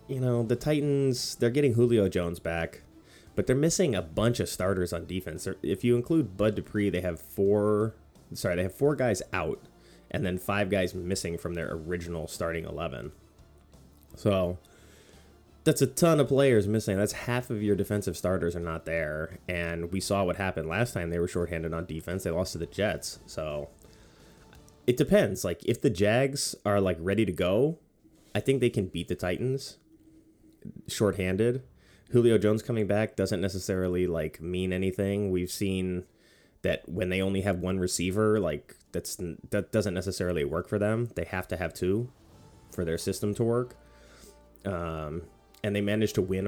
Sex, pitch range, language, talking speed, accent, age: male, 90-110 Hz, English, 170 wpm, American, 30-49